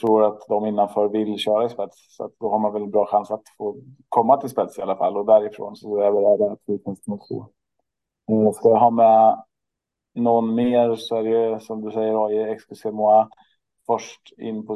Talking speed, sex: 205 wpm, male